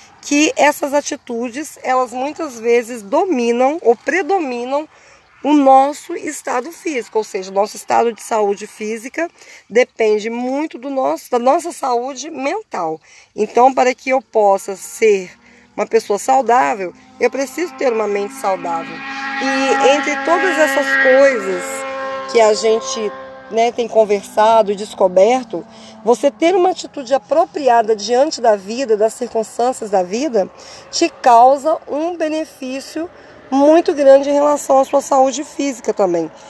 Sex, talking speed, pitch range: female, 135 wpm, 220-275 Hz